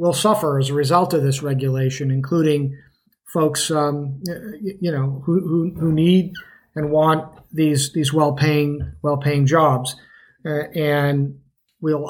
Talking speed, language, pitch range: 140 wpm, English, 145-165 Hz